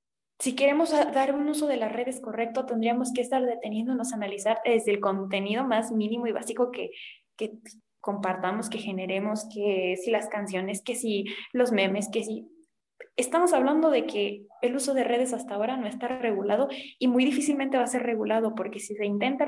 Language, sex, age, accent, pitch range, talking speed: Spanish, female, 20-39, Mexican, 215-250 Hz, 190 wpm